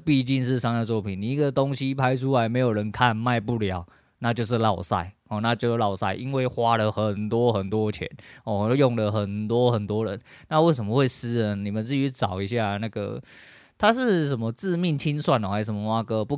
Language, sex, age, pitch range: Chinese, male, 20-39, 110-135 Hz